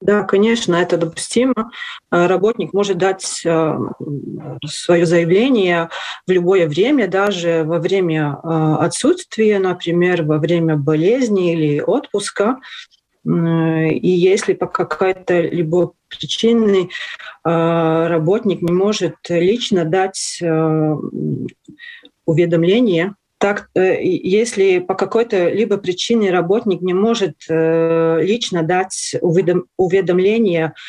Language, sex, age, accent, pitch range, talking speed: Russian, female, 30-49, native, 170-205 Hz, 90 wpm